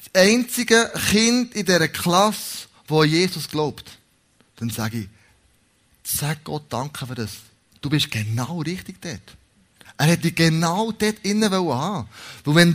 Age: 20-39